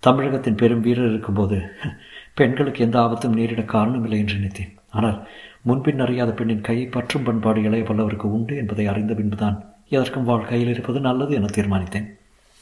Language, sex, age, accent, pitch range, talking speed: Tamil, male, 60-79, native, 90-120 Hz, 145 wpm